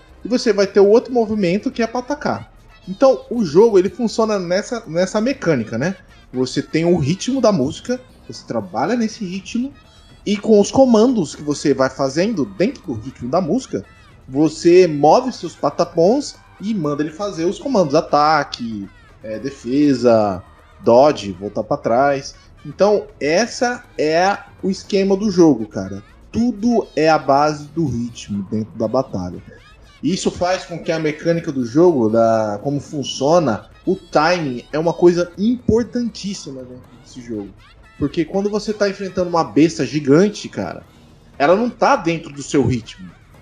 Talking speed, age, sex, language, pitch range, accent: 150 wpm, 20-39, male, Portuguese, 135-205 Hz, Brazilian